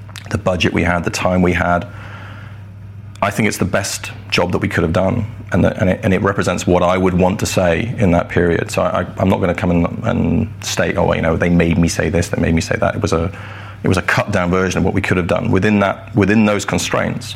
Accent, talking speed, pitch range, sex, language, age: British, 270 wpm, 90-105 Hz, male, English, 30-49